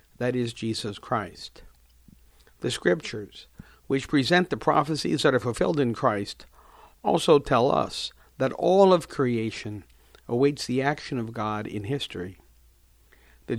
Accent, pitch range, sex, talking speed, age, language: American, 95-145 Hz, male, 135 wpm, 50-69, English